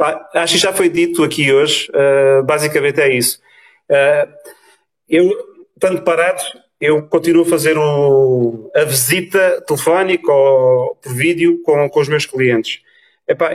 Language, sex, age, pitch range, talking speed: Portuguese, male, 40-59, 145-185 Hz, 140 wpm